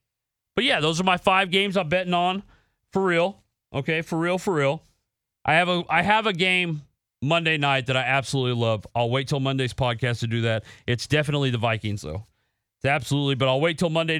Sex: male